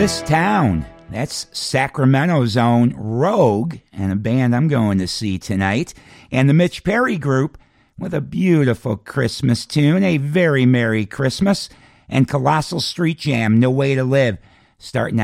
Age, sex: 50-69, male